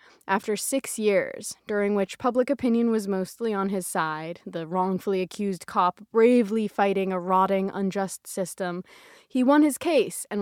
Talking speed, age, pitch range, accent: 155 wpm, 20-39, 180-225 Hz, American